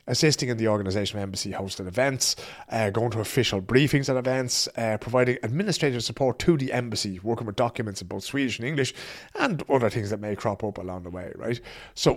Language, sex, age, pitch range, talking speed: English, male, 30-49, 100-135 Hz, 200 wpm